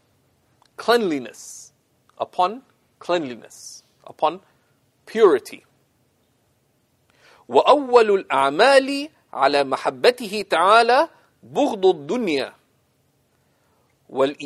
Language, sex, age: English, male, 50-69